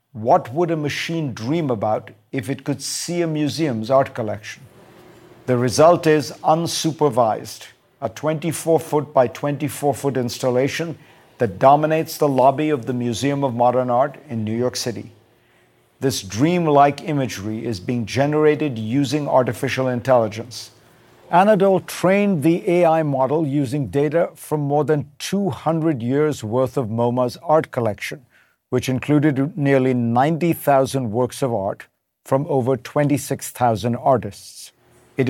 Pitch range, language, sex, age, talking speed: 125-155 Hz, English, male, 50-69, 130 wpm